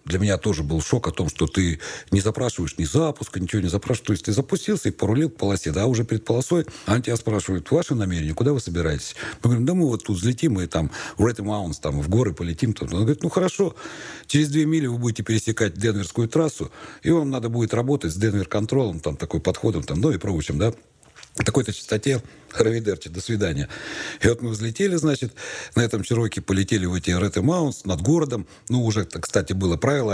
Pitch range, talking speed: 90-125 Hz, 210 wpm